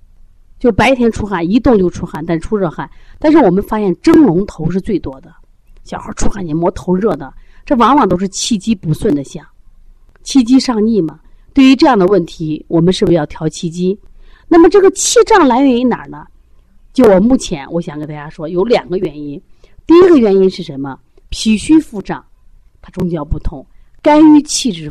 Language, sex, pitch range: Chinese, female, 165-240 Hz